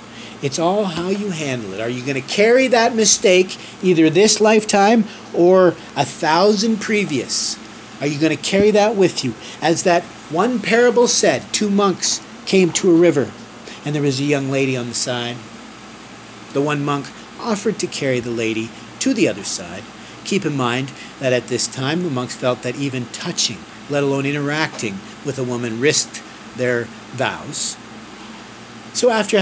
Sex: male